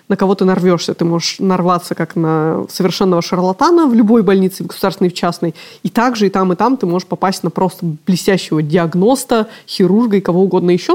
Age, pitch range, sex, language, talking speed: 20-39, 175-205 Hz, female, Russian, 195 wpm